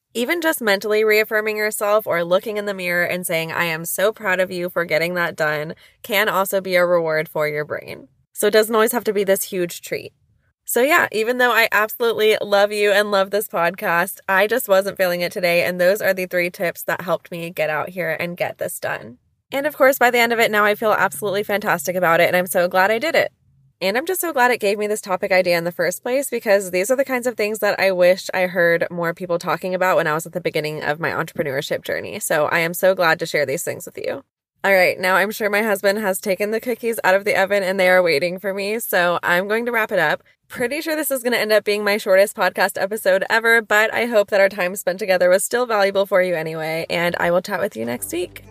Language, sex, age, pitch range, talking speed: English, female, 20-39, 175-215 Hz, 260 wpm